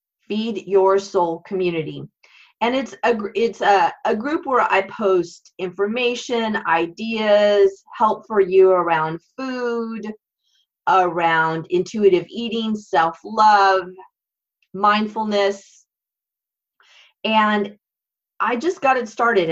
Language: English